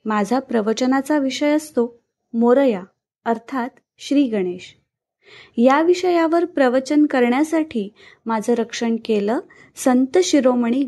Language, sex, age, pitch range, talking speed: Marathi, female, 20-39, 225-280 Hz, 95 wpm